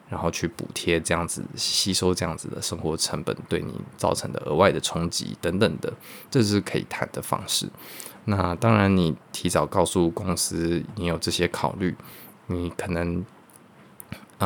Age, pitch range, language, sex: 20-39, 85-100 Hz, Chinese, male